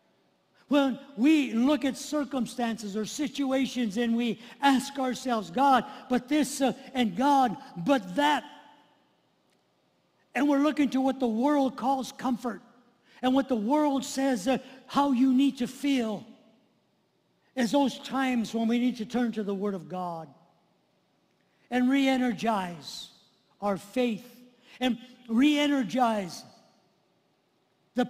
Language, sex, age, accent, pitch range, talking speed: English, male, 50-69, American, 200-255 Hz, 125 wpm